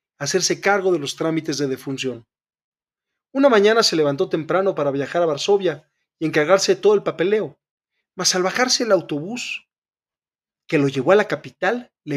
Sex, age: male, 40-59